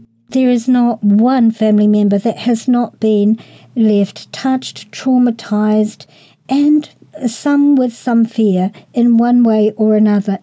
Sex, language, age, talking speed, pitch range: male, English, 50-69, 130 wpm, 200-235 Hz